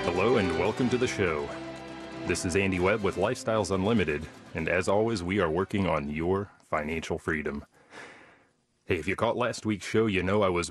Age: 30-49